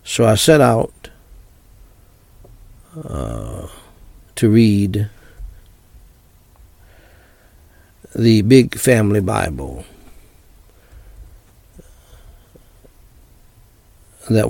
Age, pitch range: 60-79, 90-115 Hz